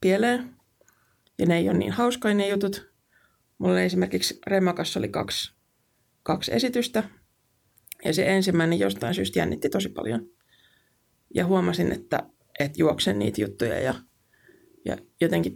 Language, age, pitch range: Finnish, 20-39, 115-195 Hz